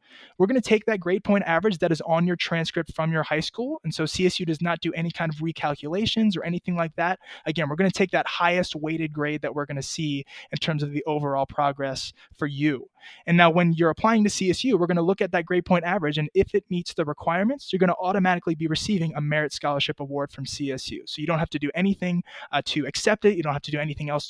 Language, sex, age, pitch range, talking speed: English, male, 20-39, 150-180 Hz, 245 wpm